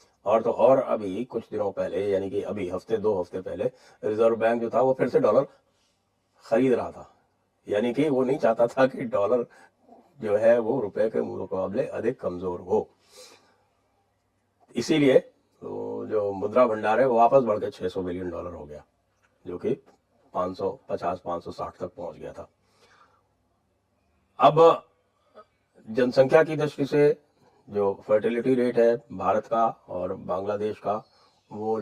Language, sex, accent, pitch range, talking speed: English, male, Indian, 95-135 Hz, 145 wpm